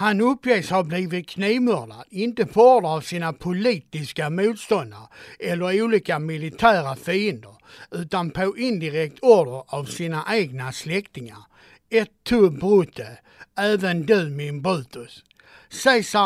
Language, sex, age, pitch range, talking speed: Swedish, male, 60-79, 160-215 Hz, 115 wpm